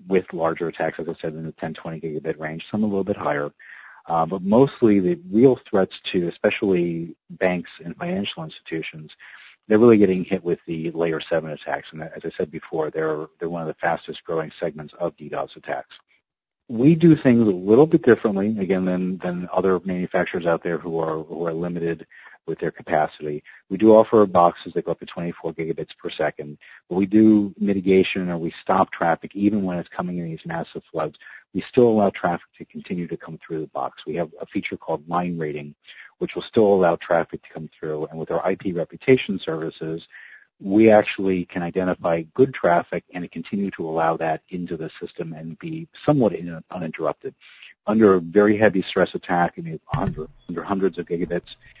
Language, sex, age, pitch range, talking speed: English, male, 40-59, 80-100 Hz, 190 wpm